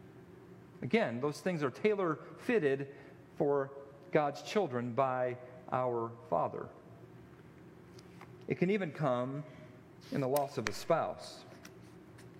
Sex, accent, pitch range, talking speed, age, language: male, American, 115-155 Hz, 100 wpm, 40-59, English